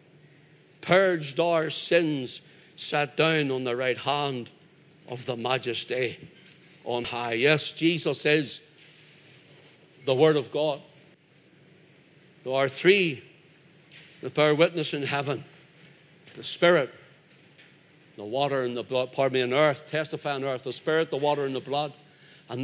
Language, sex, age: English, male, 60-79